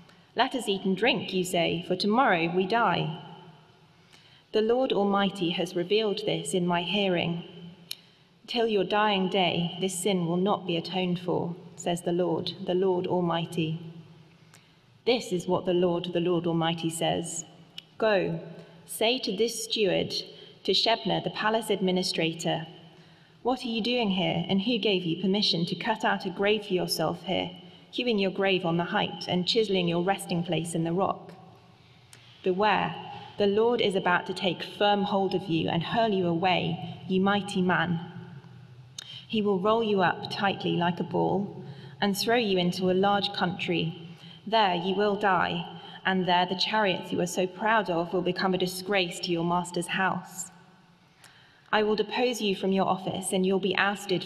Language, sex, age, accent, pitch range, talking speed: English, female, 30-49, British, 170-200 Hz, 170 wpm